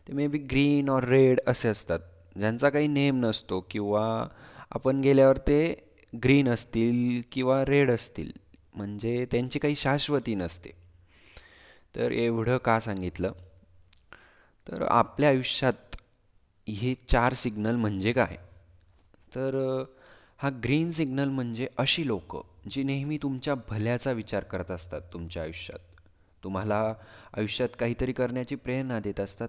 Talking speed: 100 wpm